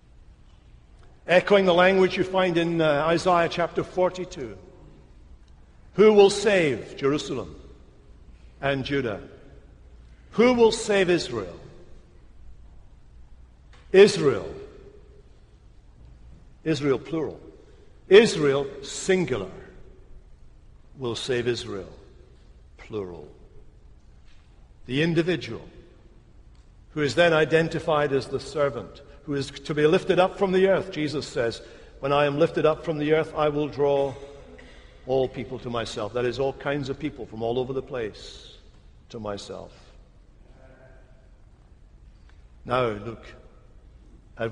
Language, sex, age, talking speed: English, male, 60-79, 110 wpm